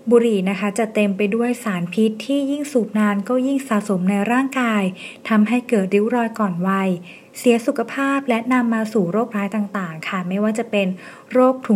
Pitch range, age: 200-240 Hz, 20-39